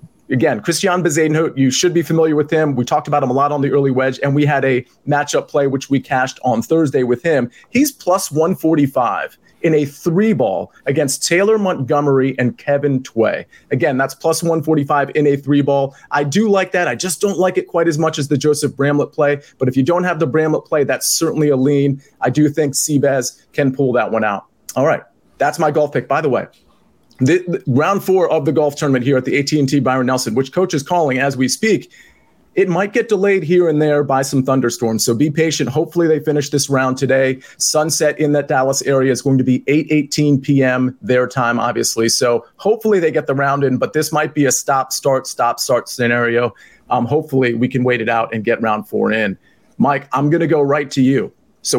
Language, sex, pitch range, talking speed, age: English, male, 135-160 Hz, 220 wpm, 30-49